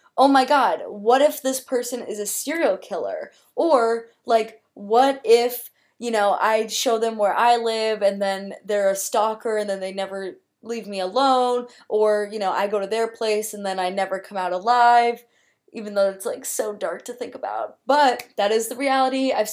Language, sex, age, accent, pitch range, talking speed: English, female, 20-39, American, 185-230 Hz, 200 wpm